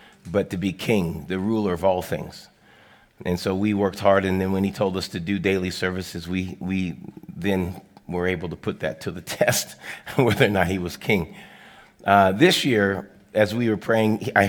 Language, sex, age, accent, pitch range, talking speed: English, male, 30-49, American, 95-105 Hz, 205 wpm